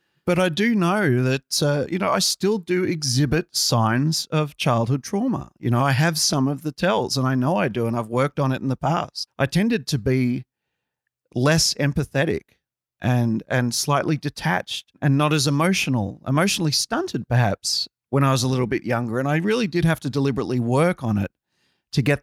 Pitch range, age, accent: 125-160 Hz, 40-59, Australian